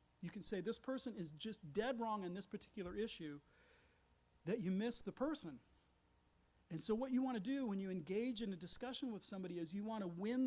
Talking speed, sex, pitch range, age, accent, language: 220 wpm, male, 155-220 Hz, 40-59, American, English